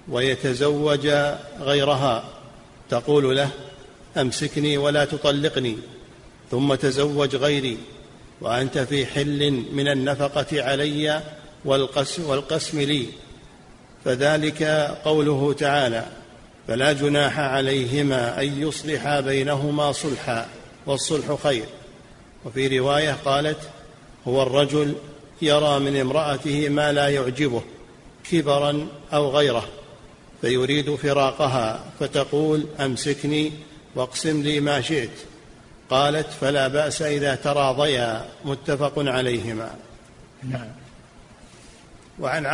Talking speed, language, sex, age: 85 wpm, Arabic, male, 50-69